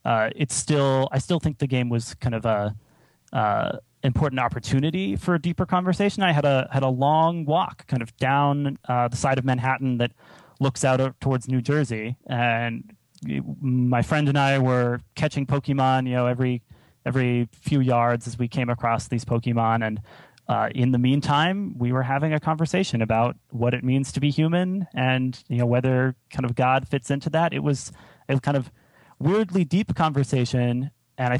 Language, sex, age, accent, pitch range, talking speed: English, male, 30-49, American, 120-140 Hz, 185 wpm